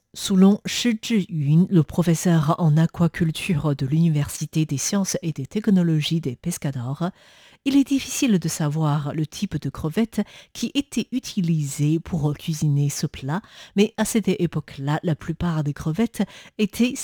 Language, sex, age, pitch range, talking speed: French, female, 50-69, 155-200 Hz, 145 wpm